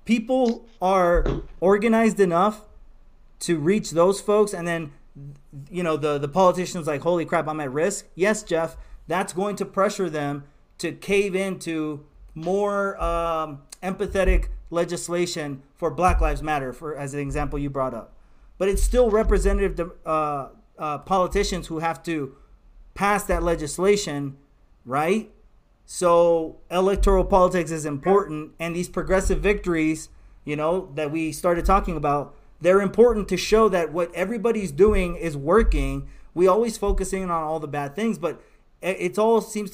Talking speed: 150 wpm